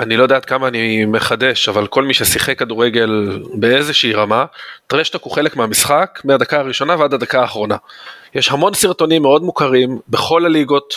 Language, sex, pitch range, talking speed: Hebrew, male, 120-160 Hz, 165 wpm